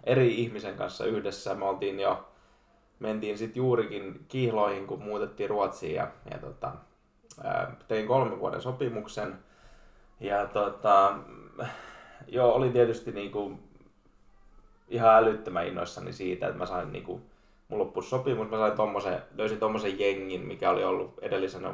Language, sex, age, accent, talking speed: Finnish, male, 20-39, native, 125 wpm